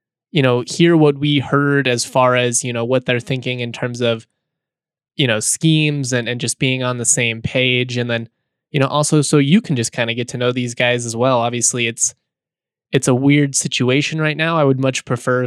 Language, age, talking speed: English, 20-39, 225 wpm